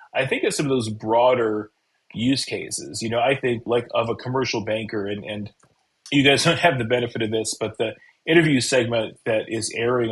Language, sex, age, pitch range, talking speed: English, male, 30-49, 110-130 Hz, 210 wpm